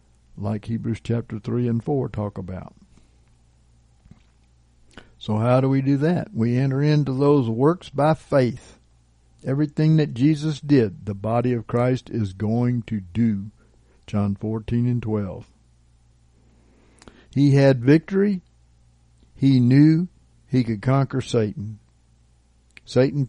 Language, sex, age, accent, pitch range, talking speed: English, male, 60-79, American, 95-140 Hz, 120 wpm